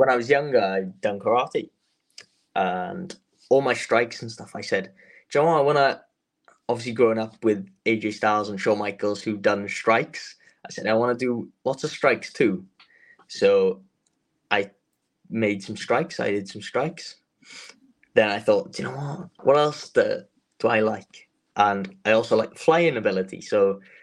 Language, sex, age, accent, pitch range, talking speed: English, male, 10-29, British, 110-150 Hz, 180 wpm